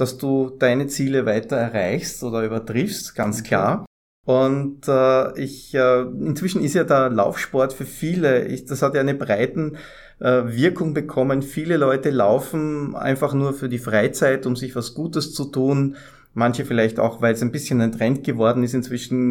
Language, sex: German, male